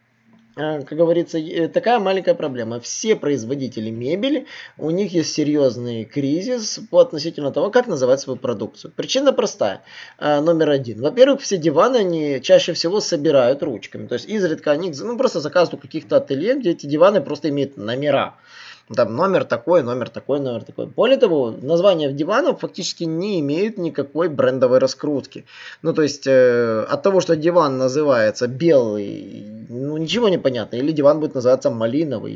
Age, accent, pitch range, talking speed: 20-39, native, 130-180 Hz, 155 wpm